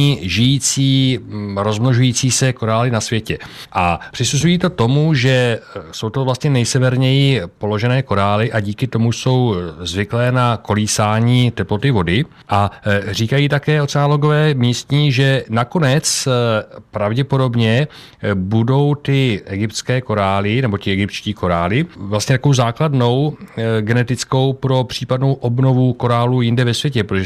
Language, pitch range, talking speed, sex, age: Czech, 105-130 Hz, 120 wpm, male, 40-59